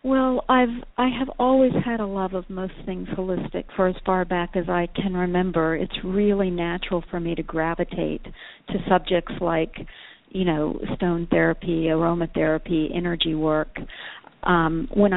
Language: English